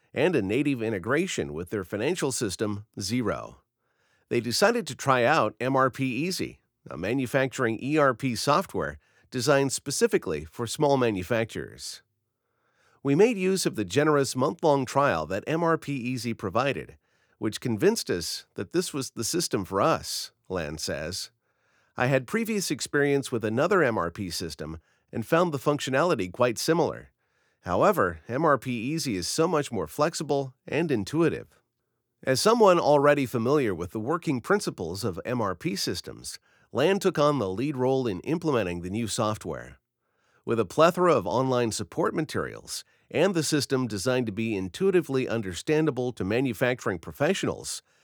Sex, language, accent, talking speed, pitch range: male, English, American, 135 wpm, 110-150 Hz